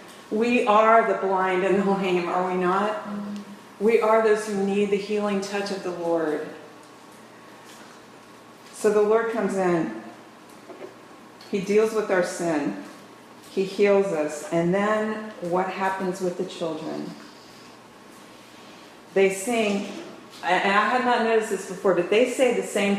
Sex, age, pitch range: female, 40-59, 175-210 Hz